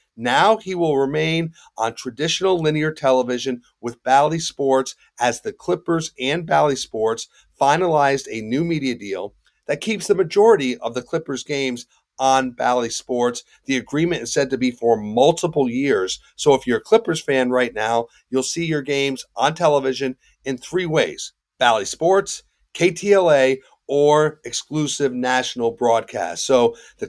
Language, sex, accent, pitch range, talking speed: English, male, American, 125-175 Hz, 150 wpm